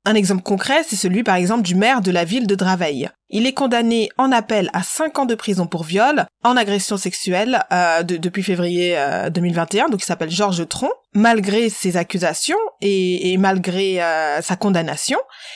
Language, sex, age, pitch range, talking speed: French, female, 20-39, 175-230 Hz, 190 wpm